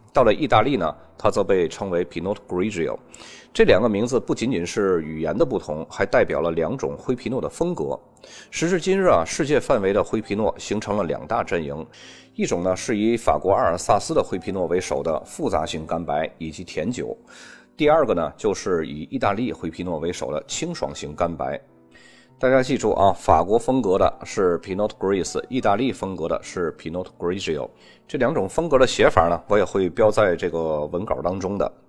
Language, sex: Chinese, male